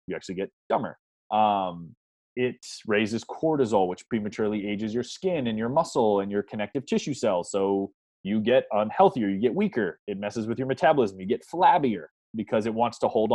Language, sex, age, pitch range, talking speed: English, male, 20-39, 100-125 Hz, 185 wpm